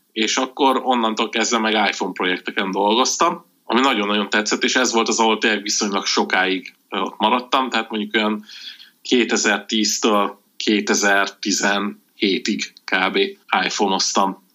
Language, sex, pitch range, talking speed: Hungarian, male, 100-115 Hz, 115 wpm